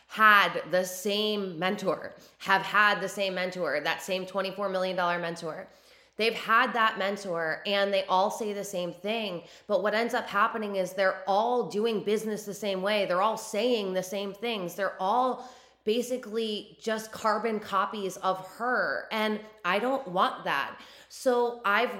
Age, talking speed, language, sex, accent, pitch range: 20-39, 160 wpm, English, female, American, 175-215 Hz